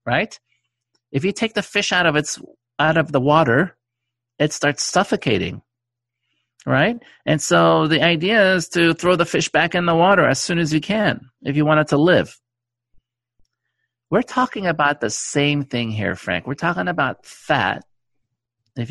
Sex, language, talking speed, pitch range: male, English, 170 wpm, 120-170 Hz